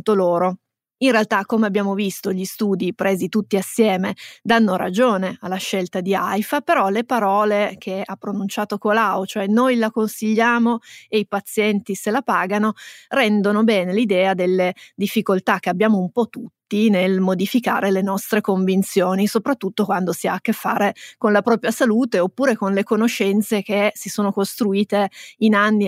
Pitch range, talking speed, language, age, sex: 190-225 Hz, 160 wpm, Italian, 30-49, female